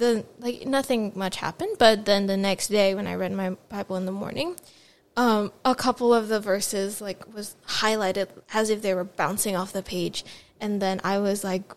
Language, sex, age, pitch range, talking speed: English, female, 10-29, 200-235 Hz, 205 wpm